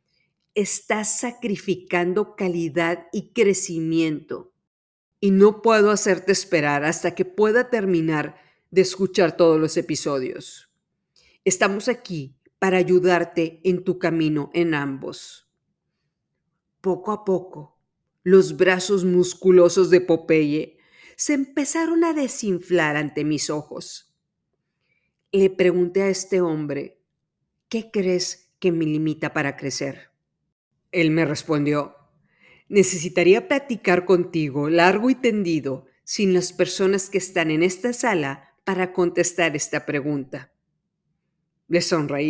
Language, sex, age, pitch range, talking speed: Spanish, female, 40-59, 160-195 Hz, 110 wpm